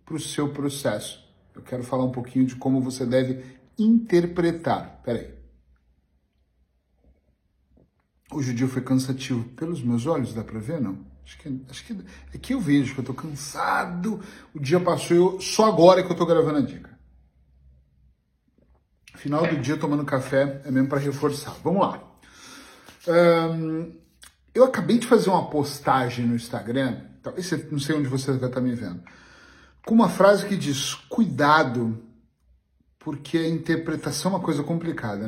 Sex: male